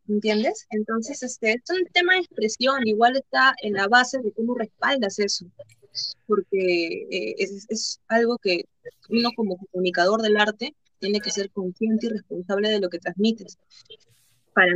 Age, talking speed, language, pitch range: 20-39, 160 wpm, Spanish, 195-235 Hz